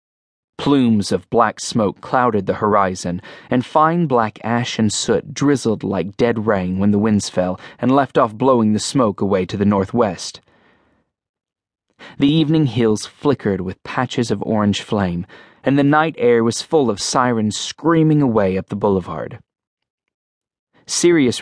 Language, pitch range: English, 105-140 Hz